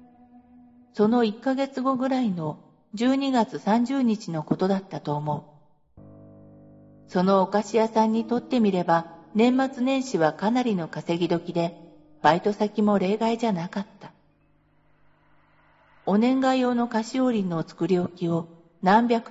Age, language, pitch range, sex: 50-69, Japanese, 165-245 Hz, female